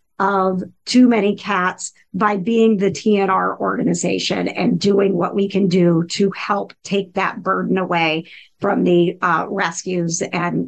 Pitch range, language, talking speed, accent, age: 190-215 Hz, English, 145 wpm, American, 50-69